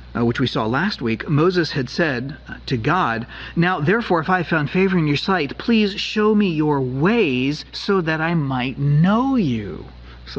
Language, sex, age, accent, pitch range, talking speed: English, male, 40-59, American, 120-195 Hz, 185 wpm